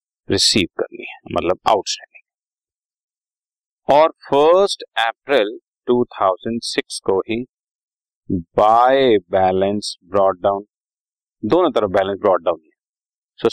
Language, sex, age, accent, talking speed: Hindi, male, 40-59, native, 95 wpm